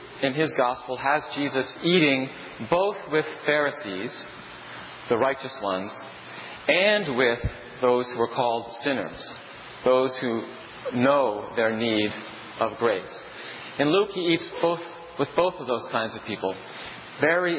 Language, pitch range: English, 120-155 Hz